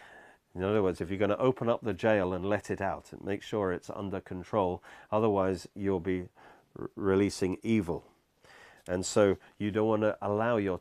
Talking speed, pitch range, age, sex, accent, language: 185 wpm, 95-130 Hz, 40-59, male, British, English